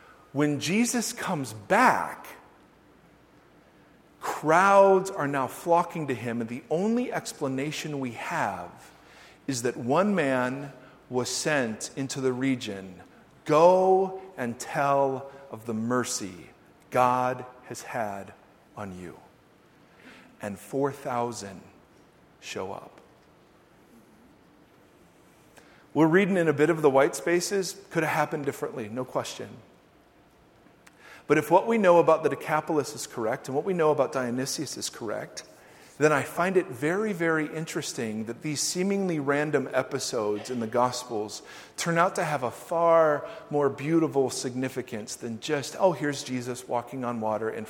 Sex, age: male, 40-59